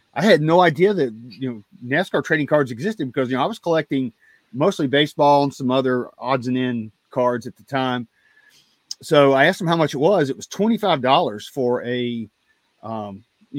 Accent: American